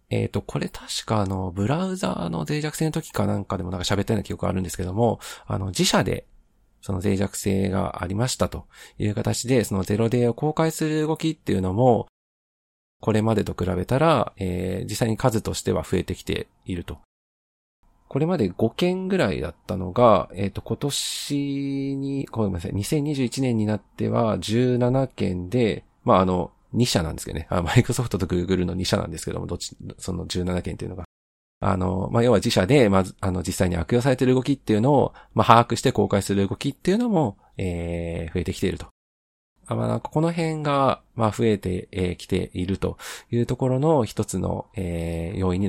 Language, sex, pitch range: Japanese, male, 95-125 Hz